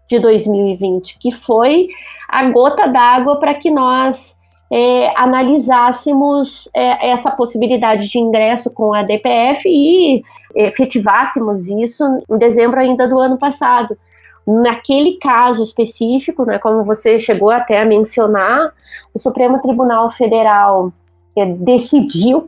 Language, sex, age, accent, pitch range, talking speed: Portuguese, female, 20-39, Brazilian, 220-270 Hz, 110 wpm